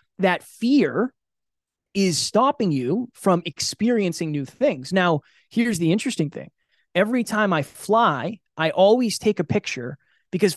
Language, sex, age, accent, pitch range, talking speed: English, male, 20-39, American, 150-200 Hz, 135 wpm